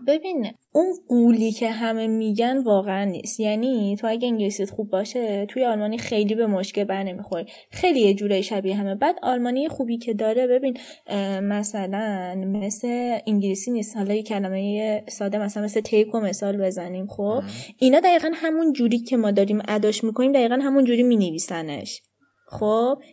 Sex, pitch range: female, 195-240 Hz